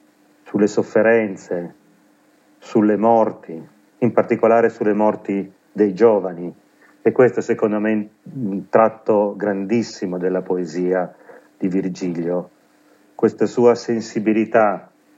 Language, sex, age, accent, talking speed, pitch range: Italian, male, 40-59, native, 100 wpm, 100-115 Hz